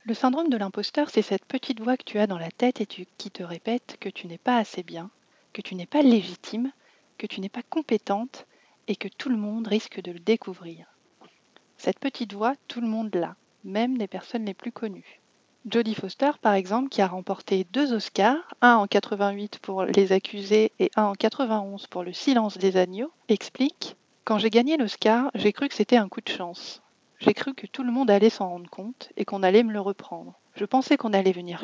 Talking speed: 215 wpm